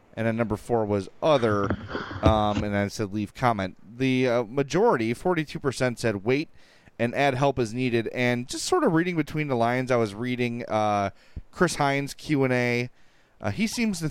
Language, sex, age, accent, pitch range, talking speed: English, male, 30-49, American, 110-140 Hz, 185 wpm